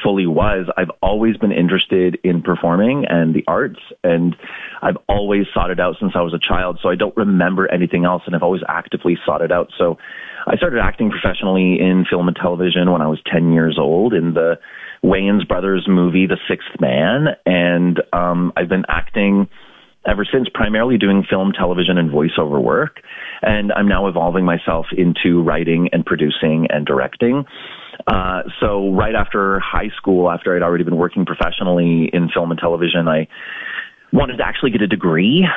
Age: 30-49